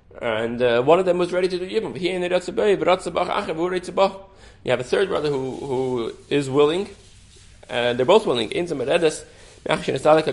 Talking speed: 130 wpm